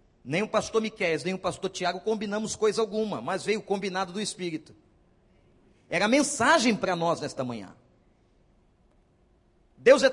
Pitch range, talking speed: 190-245 Hz, 155 wpm